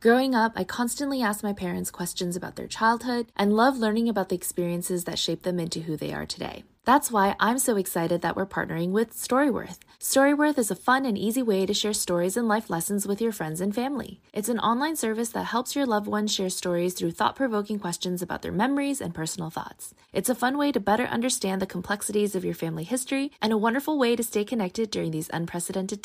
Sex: female